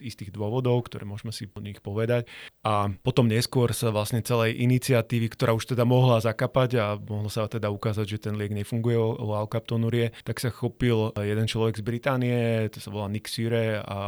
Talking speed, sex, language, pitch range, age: 190 wpm, male, Slovak, 105-115 Hz, 30-49